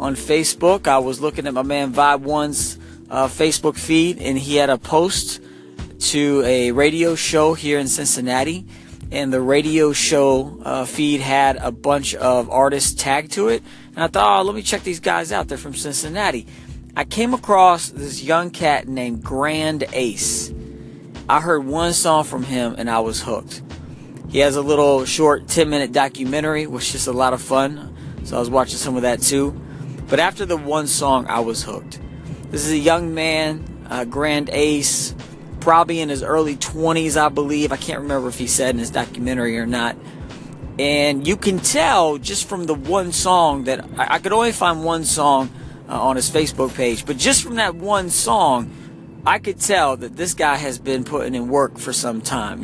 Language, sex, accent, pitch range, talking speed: English, male, American, 130-155 Hz, 190 wpm